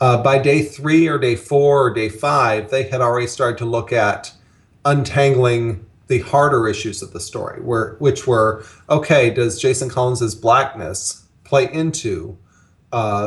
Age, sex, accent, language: 40-59, male, American, English